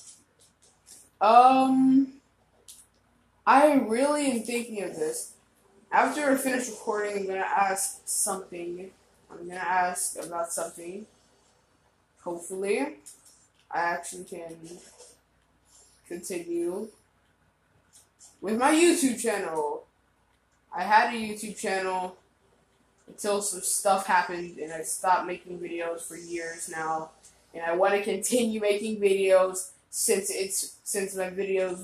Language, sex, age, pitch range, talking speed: English, female, 20-39, 175-235 Hz, 110 wpm